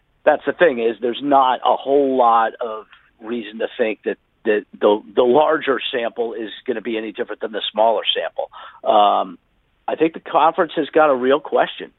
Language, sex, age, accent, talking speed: English, male, 50-69, American, 195 wpm